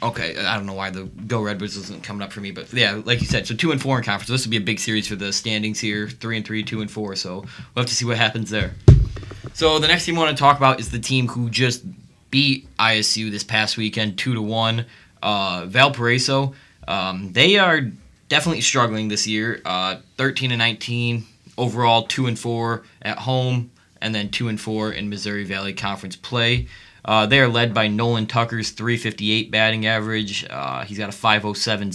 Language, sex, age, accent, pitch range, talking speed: English, male, 20-39, American, 100-120 Hz, 215 wpm